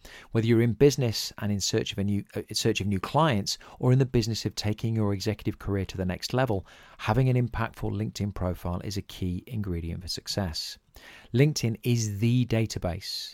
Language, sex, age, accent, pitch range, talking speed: English, male, 40-59, British, 95-115 Hz, 195 wpm